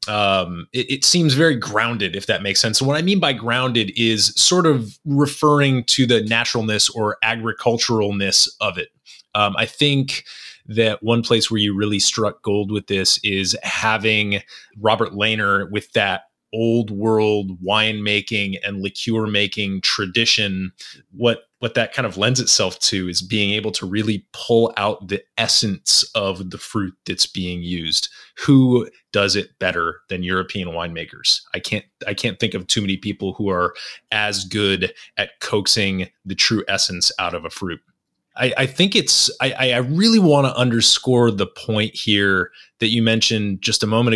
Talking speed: 170 wpm